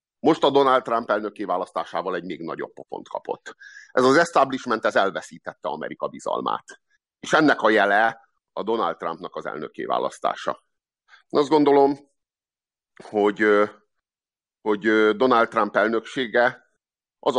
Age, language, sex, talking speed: 50-69, Hungarian, male, 125 wpm